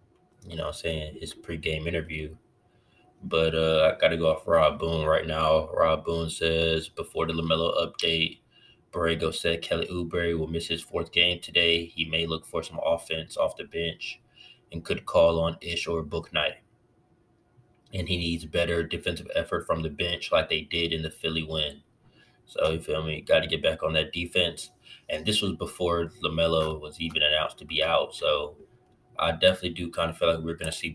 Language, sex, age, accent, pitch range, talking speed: English, male, 20-39, American, 80-90 Hz, 195 wpm